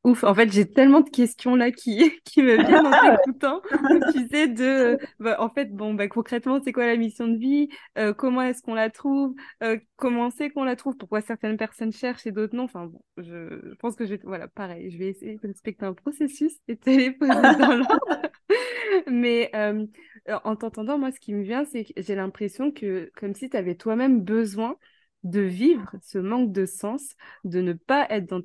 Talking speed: 210 wpm